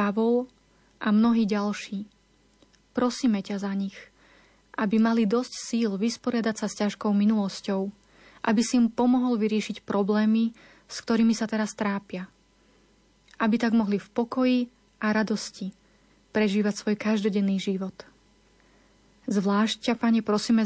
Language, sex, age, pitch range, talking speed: Slovak, female, 30-49, 205-230 Hz, 125 wpm